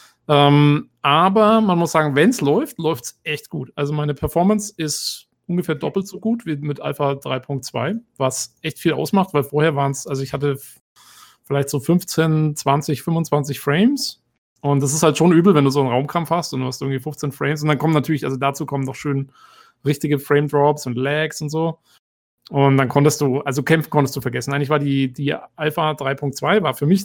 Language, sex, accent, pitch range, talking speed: German, male, German, 140-165 Hz, 205 wpm